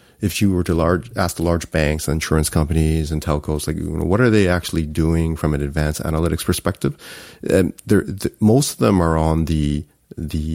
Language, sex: English, male